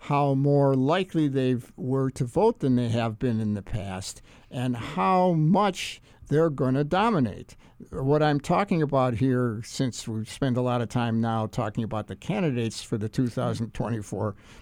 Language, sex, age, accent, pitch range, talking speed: English, male, 60-79, American, 115-150 Hz, 170 wpm